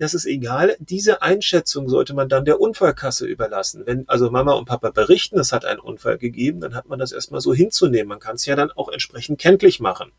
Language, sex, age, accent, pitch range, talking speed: German, male, 30-49, German, 130-190 Hz, 225 wpm